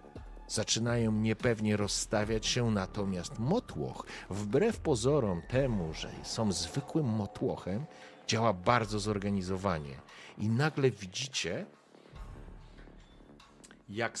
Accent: native